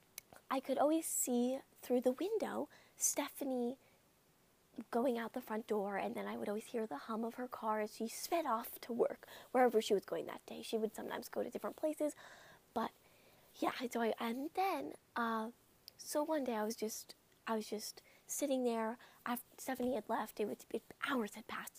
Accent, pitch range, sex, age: American, 220-265 Hz, female, 20-39